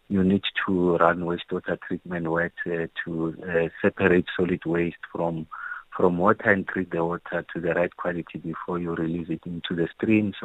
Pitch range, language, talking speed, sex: 85-90 Hz, English, 165 wpm, male